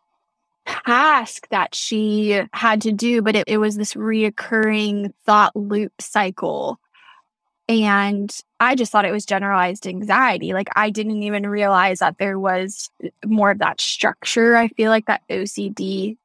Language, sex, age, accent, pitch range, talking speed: English, female, 10-29, American, 205-230 Hz, 150 wpm